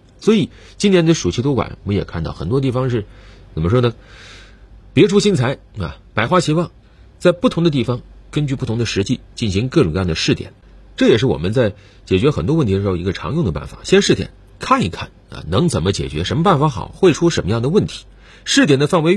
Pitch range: 90-140 Hz